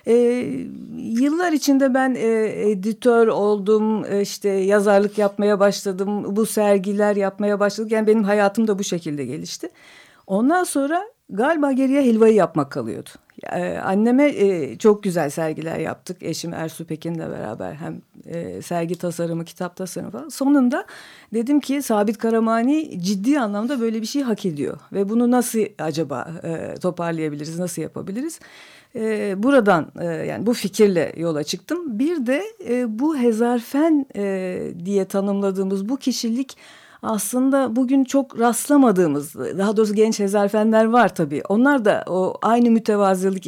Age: 50-69